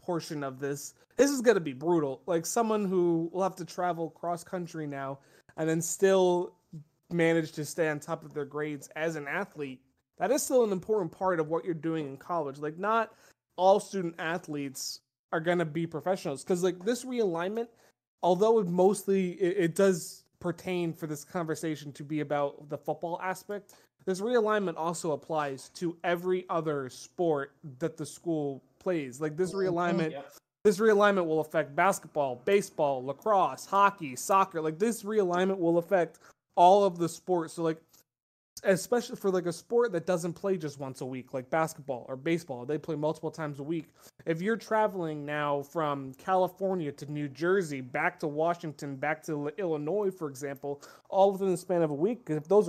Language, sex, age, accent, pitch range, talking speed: English, male, 20-39, American, 150-185 Hz, 180 wpm